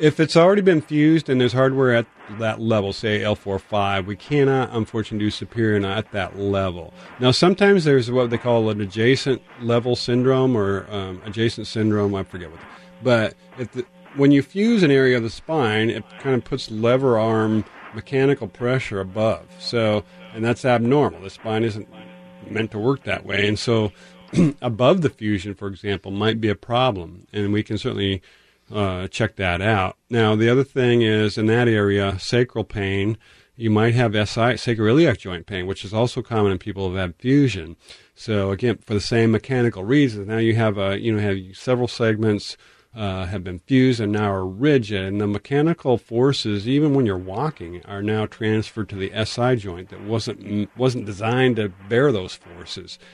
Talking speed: 195 wpm